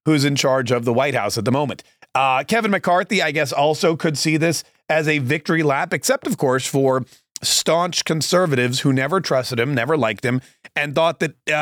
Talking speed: 205 wpm